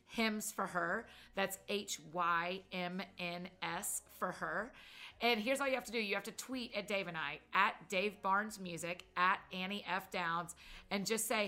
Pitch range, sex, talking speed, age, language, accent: 175-205 Hz, female, 170 wpm, 30-49, English, American